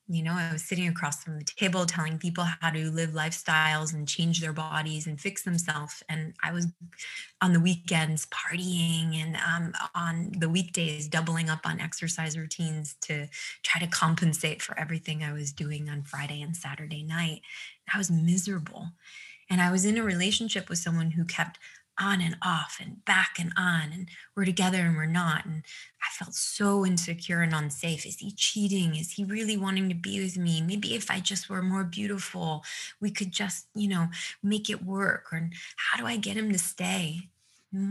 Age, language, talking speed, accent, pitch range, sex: 20-39, English, 190 wpm, American, 160-190 Hz, female